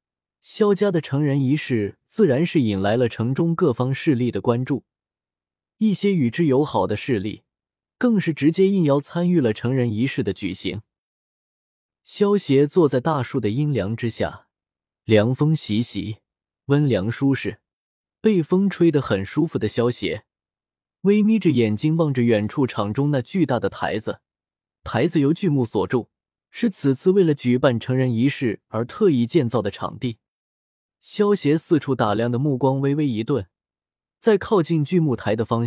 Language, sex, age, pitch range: Chinese, male, 20-39, 115-160 Hz